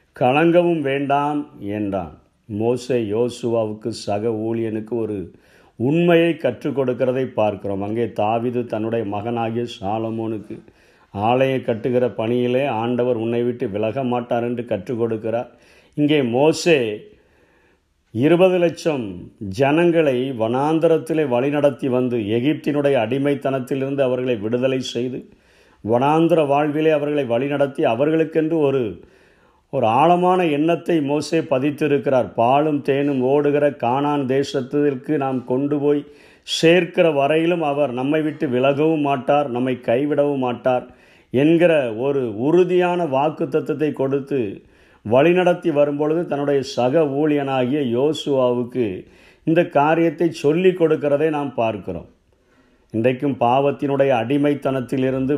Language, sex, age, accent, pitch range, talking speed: Tamil, male, 50-69, native, 120-150 Hz, 95 wpm